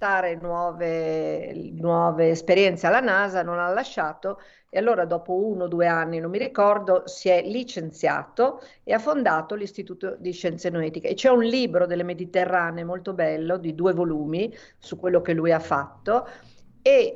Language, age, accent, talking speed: Italian, 50-69, native, 155 wpm